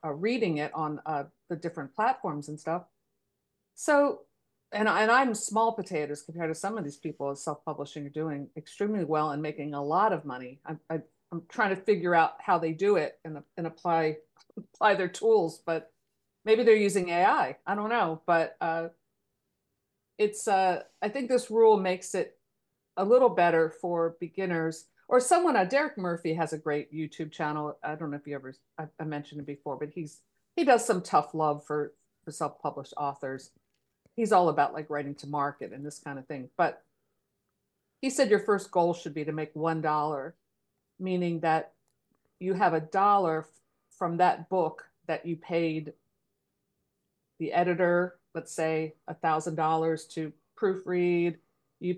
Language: English